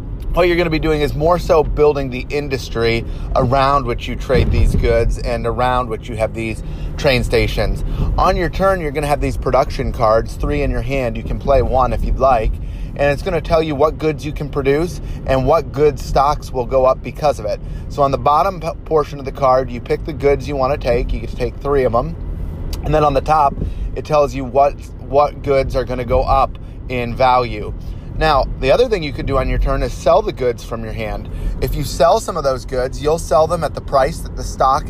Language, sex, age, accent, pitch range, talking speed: English, male, 30-49, American, 110-145 Hz, 235 wpm